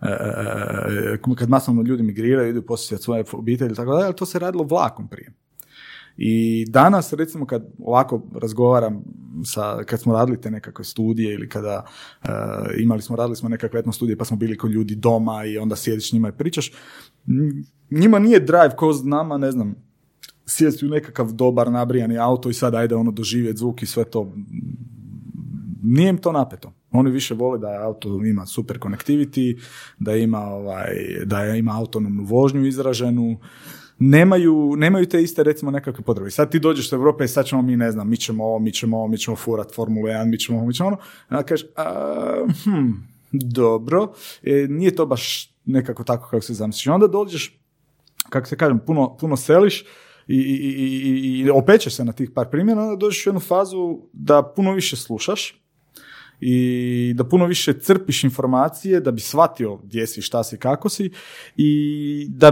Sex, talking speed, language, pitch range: male, 180 wpm, Croatian, 115-150 Hz